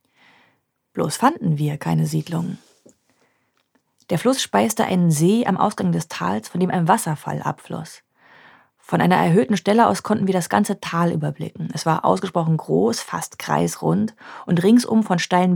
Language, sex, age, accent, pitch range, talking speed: German, female, 30-49, German, 160-195 Hz, 155 wpm